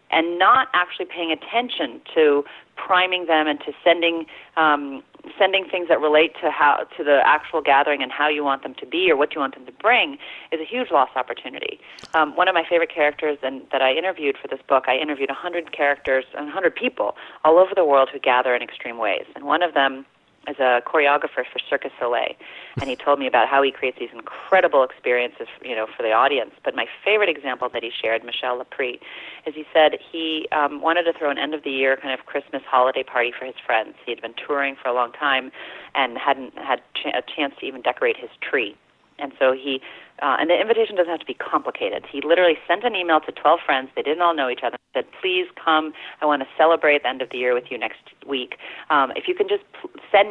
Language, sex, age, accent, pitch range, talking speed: English, female, 30-49, American, 135-185 Hz, 230 wpm